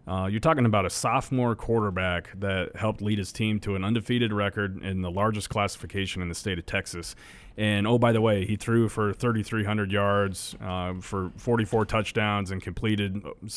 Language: English